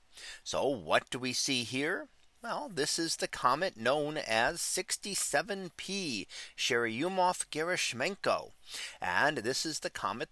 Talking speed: 120 wpm